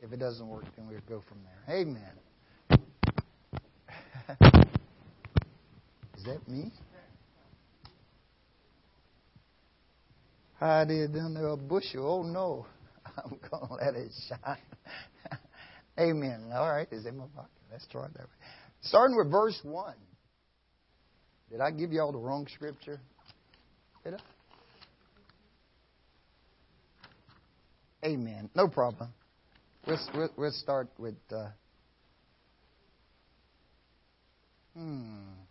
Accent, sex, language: American, male, English